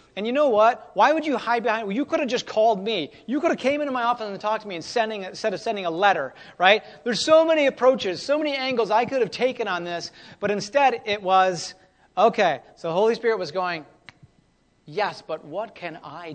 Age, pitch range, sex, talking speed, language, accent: 30-49, 165-245 Hz, male, 235 wpm, English, American